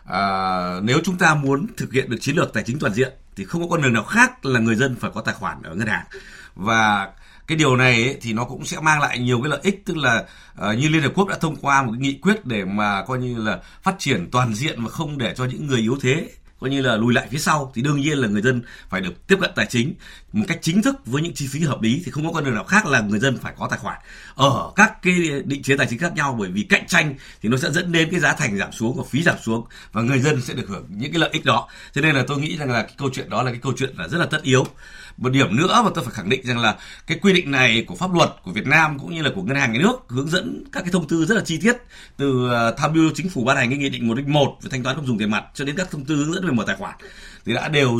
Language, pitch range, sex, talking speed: Vietnamese, 125-180 Hz, male, 310 wpm